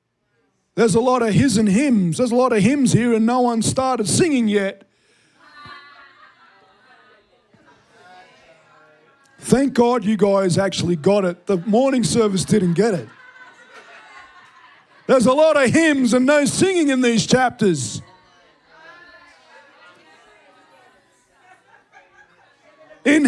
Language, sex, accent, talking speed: English, male, Australian, 115 wpm